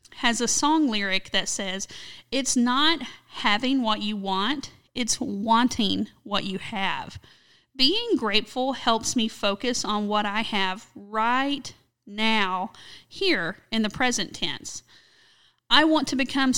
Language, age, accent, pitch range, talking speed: English, 40-59, American, 210-270 Hz, 135 wpm